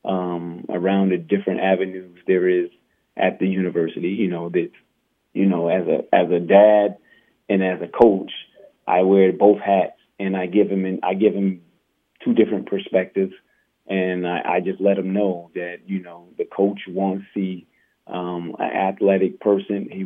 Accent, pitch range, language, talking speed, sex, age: American, 90-100 Hz, English, 175 wpm, male, 30-49